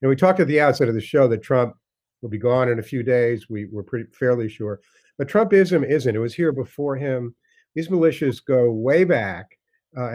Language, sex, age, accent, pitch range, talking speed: English, male, 50-69, American, 115-145 Hz, 215 wpm